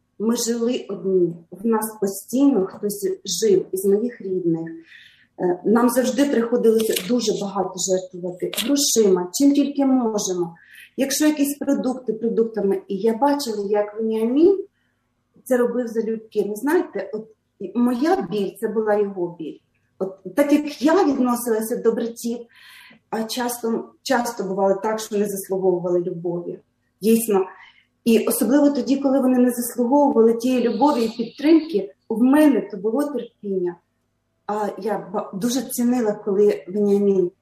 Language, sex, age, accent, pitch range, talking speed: Ukrainian, female, 30-49, native, 195-250 Hz, 130 wpm